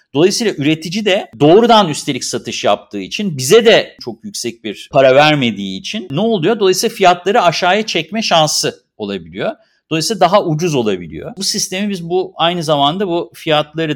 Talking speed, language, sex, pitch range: 155 wpm, Turkish, male, 135-195 Hz